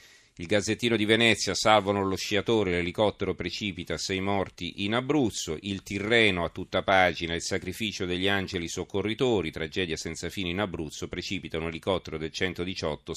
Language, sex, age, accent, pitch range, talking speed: Italian, male, 40-59, native, 85-100 Hz, 150 wpm